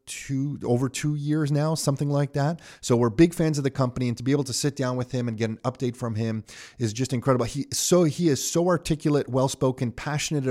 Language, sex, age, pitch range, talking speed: English, male, 30-49, 115-135 Hz, 240 wpm